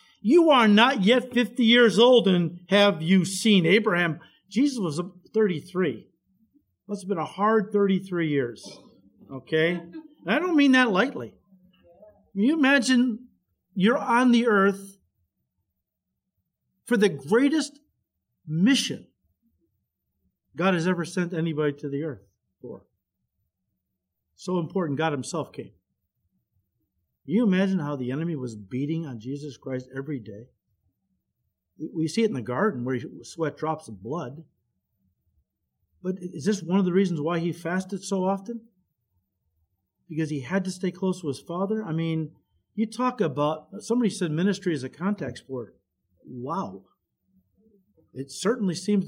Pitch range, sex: 125-205 Hz, male